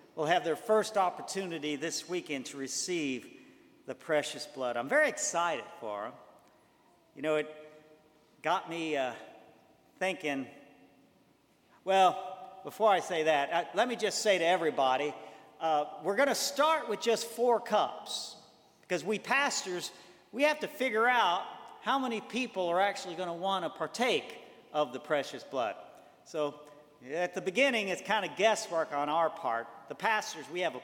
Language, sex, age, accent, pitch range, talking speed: English, male, 50-69, American, 165-230 Hz, 160 wpm